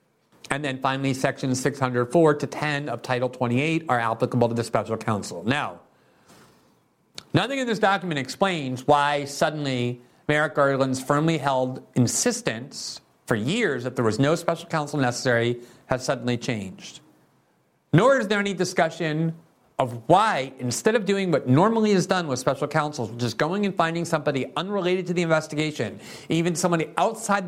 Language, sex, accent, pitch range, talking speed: English, male, American, 140-210 Hz, 155 wpm